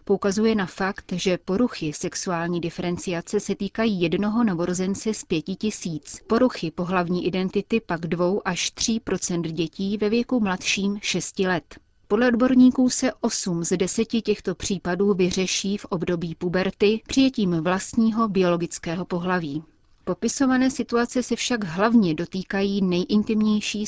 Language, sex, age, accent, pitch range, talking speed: Czech, female, 30-49, native, 175-215 Hz, 130 wpm